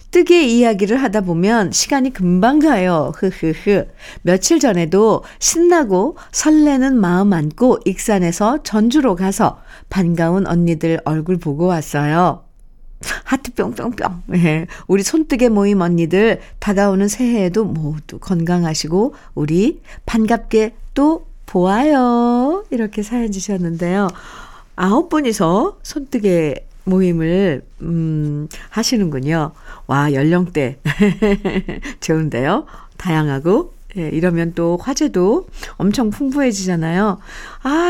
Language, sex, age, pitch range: Korean, female, 50-69, 165-235 Hz